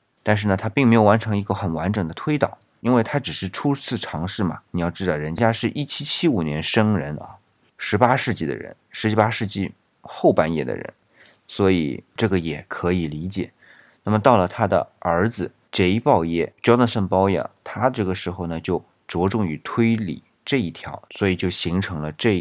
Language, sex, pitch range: Chinese, male, 85-110 Hz